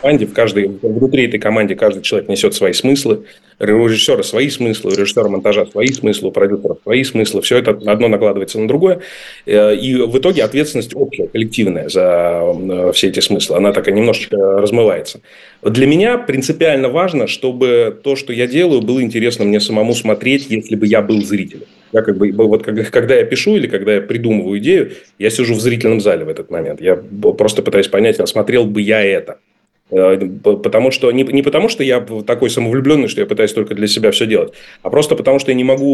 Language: Russian